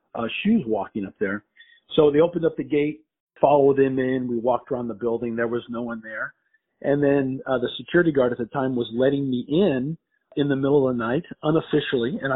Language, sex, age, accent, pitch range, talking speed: English, male, 40-59, American, 120-145 Hz, 220 wpm